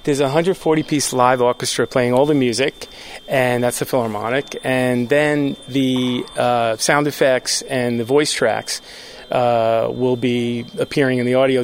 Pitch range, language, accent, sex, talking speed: 125-140 Hz, English, American, male, 155 wpm